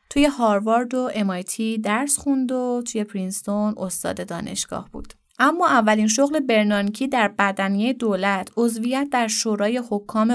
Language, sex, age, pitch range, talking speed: Persian, female, 30-49, 195-235 Hz, 135 wpm